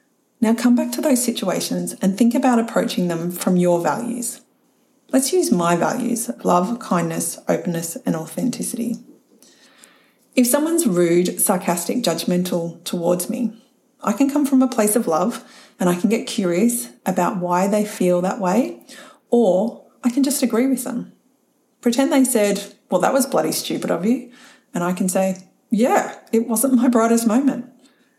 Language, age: English, 30-49